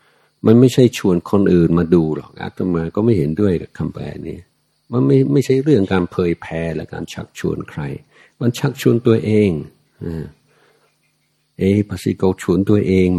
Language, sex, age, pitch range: Thai, male, 60-79, 85-105 Hz